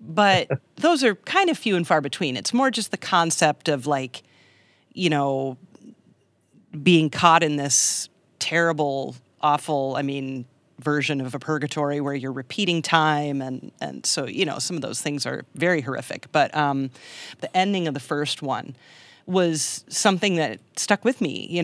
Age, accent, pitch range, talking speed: 40-59, American, 145-180 Hz, 170 wpm